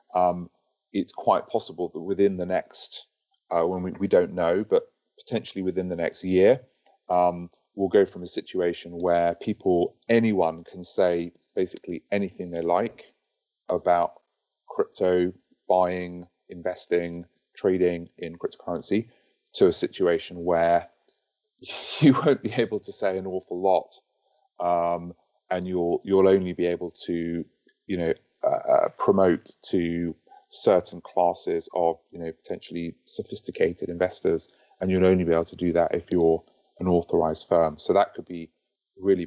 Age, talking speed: 30-49, 145 wpm